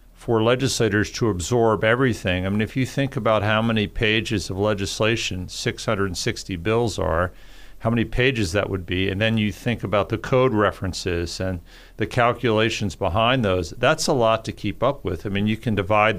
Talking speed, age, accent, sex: 185 wpm, 50-69, American, male